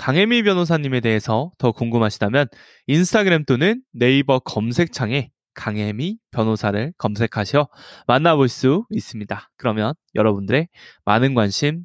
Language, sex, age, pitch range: Korean, male, 20-39, 115-195 Hz